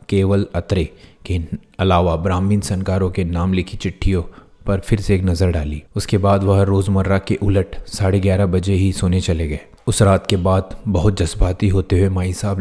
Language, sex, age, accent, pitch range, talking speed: Hindi, male, 30-49, native, 90-100 Hz, 185 wpm